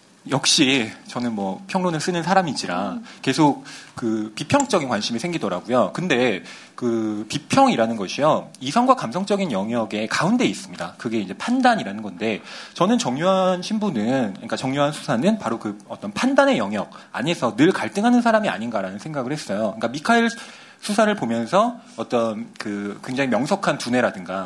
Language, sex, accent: Korean, male, native